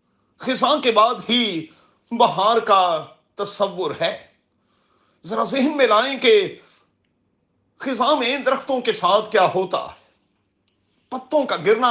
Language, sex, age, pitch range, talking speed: Urdu, male, 40-59, 190-255 Hz, 120 wpm